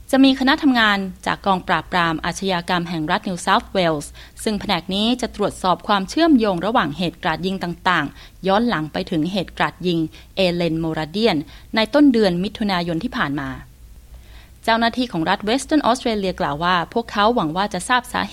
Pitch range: 170-220 Hz